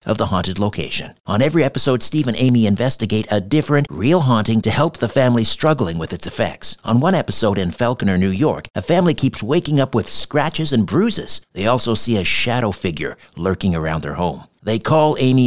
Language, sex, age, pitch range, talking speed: English, male, 50-69, 100-130 Hz, 200 wpm